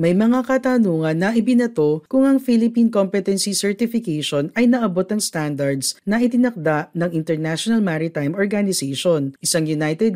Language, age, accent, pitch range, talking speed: Filipino, 40-59, native, 155-230 Hz, 130 wpm